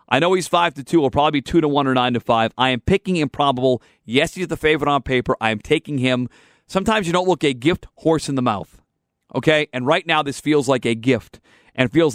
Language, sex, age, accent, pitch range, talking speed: English, male, 40-59, American, 130-170 Hz, 255 wpm